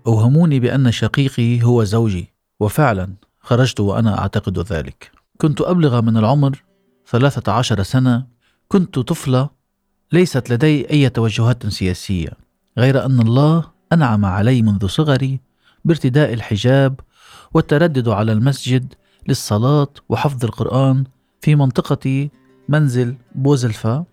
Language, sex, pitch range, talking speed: Arabic, male, 110-140 Hz, 105 wpm